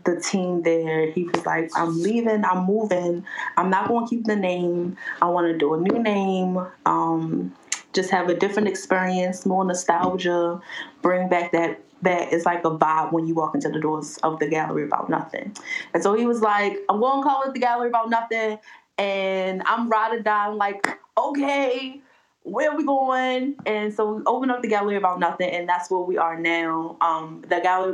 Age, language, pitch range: 20-39, English, 175-210 Hz